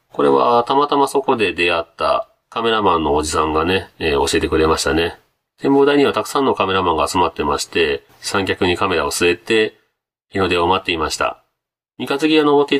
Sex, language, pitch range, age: male, Japanese, 100-160 Hz, 40-59